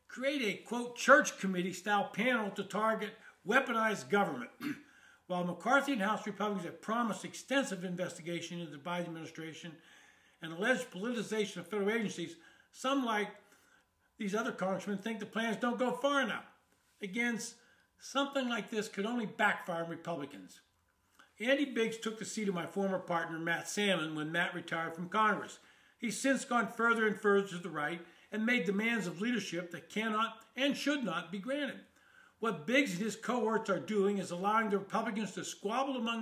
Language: English